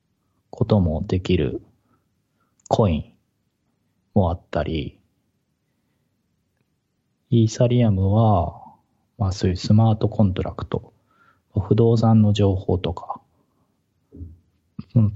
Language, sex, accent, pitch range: Japanese, male, native, 95-120 Hz